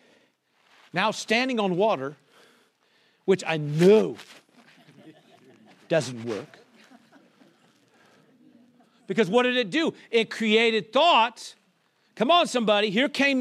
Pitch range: 190-290 Hz